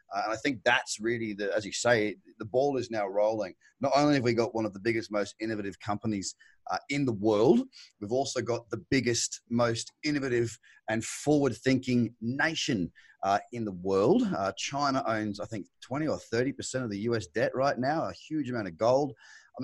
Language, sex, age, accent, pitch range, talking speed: English, male, 30-49, Australian, 110-135 Hz, 200 wpm